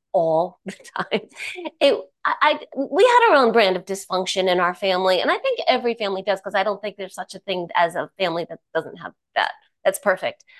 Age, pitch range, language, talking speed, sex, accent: 30-49, 175-235 Hz, English, 220 wpm, female, American